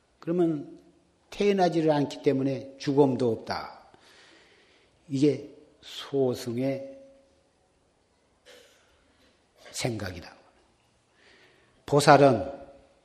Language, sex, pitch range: Korean, male, 120-160 Hz